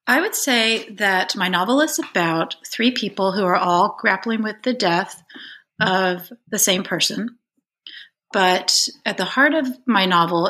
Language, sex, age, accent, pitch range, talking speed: English, female, 30-49, American, 175-220 Hz, 160 wpm